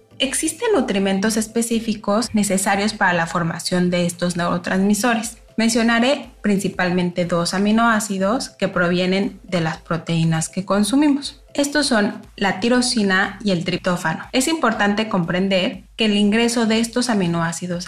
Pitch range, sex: 180-230 Hz, female